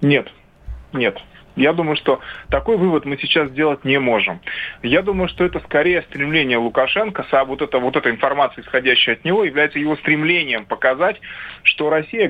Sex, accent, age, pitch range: male, native, 20-39, 135-170 Hz